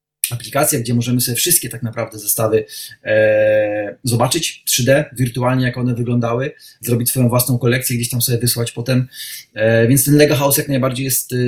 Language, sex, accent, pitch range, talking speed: Polish, male, native, 115-140 Hz, 155 wpm